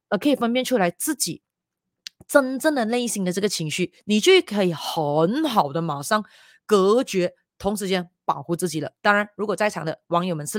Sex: female